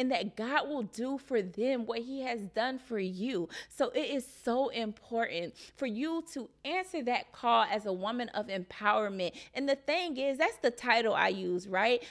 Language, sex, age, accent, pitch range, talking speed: English, female, 20-39, American, 205-255 Hz, 195 wpm